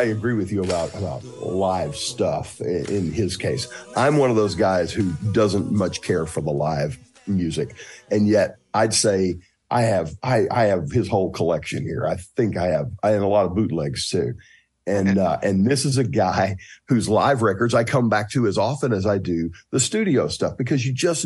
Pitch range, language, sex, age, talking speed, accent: 105-135 Hz, English, male, 50-69, 205 wpm, American